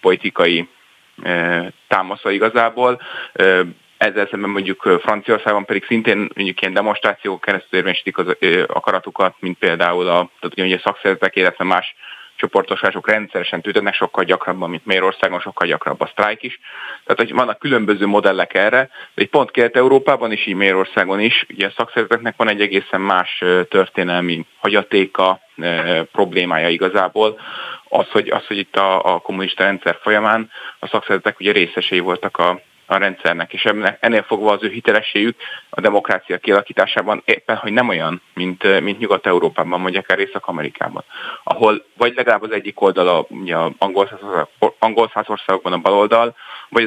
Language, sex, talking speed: Hungarian, male, 135 wpm